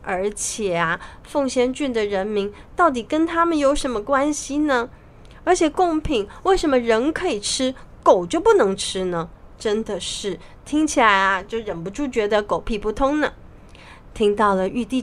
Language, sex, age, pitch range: Chinese, female, 30-49, 195-280 Hz